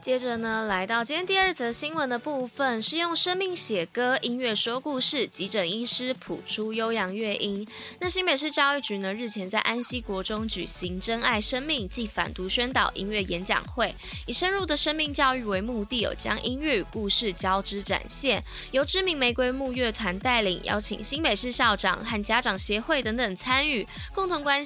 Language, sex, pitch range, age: Chinese, female, 200-265 Hz, 20-39